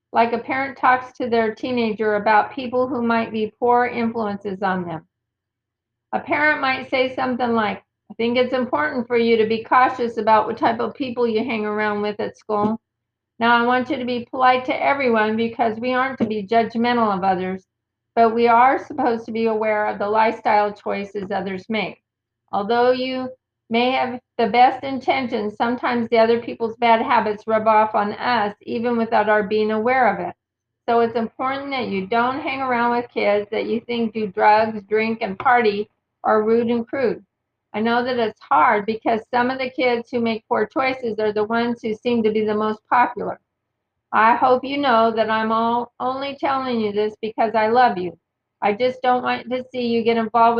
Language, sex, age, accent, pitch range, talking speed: English, female, 50-69, American, 215-250 Hz, 195 wpm